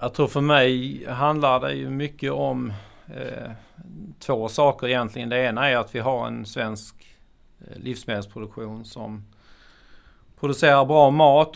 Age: 40-59